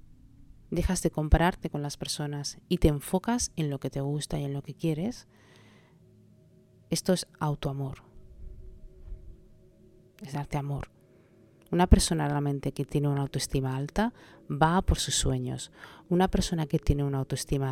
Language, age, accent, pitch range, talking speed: Spanish, 30-49, Spanish, 135-165 Hz, 145 wpm